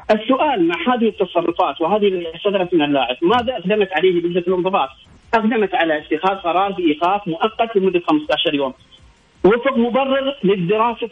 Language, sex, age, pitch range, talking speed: Arabic, male, 40-59, 175-245 Hz, 135 wpm